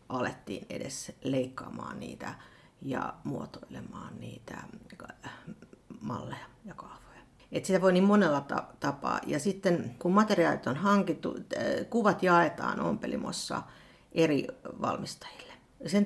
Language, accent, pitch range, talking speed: Finnish, native, 165-205 Hz, 100 wpm